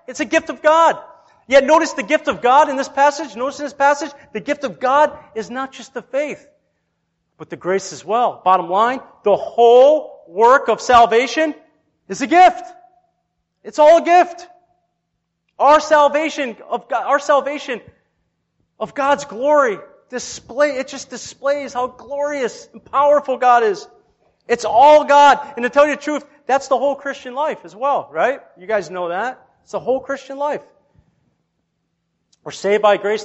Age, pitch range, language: 40-59, 200-290 Hz, English